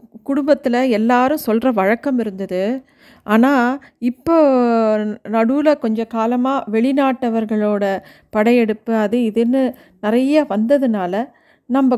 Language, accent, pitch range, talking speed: Tamil, native, 215-265 Hz, 85 wpm